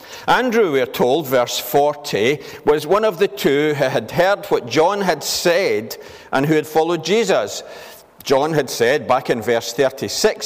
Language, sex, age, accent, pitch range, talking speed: English, male, 50-69, British, 115-180 Hz, 165 wpm